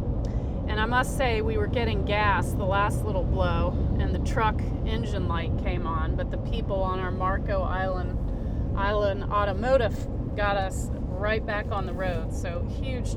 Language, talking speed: English, 170 wpm